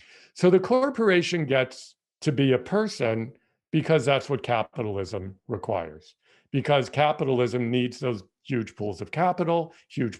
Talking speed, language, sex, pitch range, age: 130 wpm, English, male, 115-150 Hz, 50-69